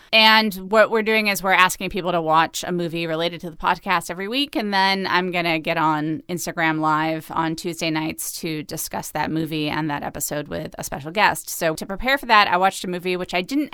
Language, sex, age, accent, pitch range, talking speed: English, female, 20-39, American, 160-195 Hz, 230 wpm